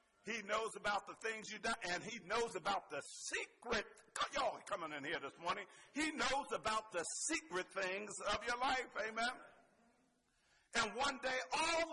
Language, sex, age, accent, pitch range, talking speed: English, male, 50-69, American, 205-270 Hz, 170 wpm